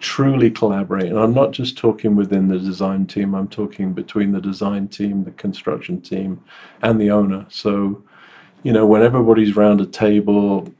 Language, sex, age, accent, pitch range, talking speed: English, male, 40-59, British, 100-110 Hz, 170 wpm